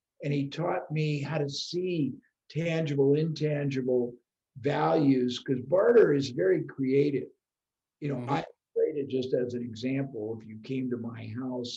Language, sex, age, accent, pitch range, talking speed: English, male, 50-69, American, 125-155 Hz, 150 wpm